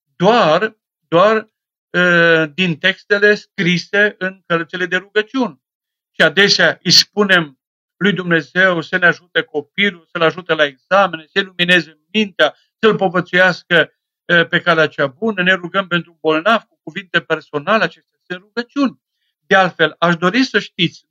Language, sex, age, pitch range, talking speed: Romanian, male, 50-69, 160-210 Hz, 140 wpm